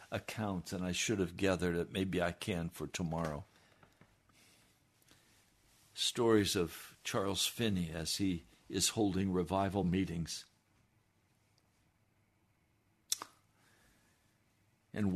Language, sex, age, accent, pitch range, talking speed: English, male, 60-79, American, 90-110 Hz, 85 wpm